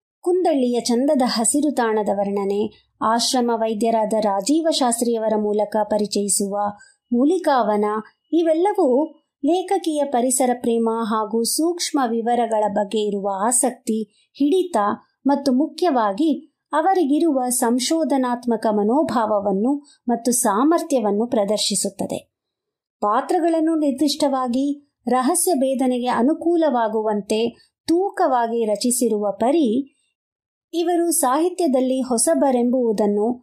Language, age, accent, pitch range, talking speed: Kannada, 50-69, native, 220-295 Hz, 75 wpm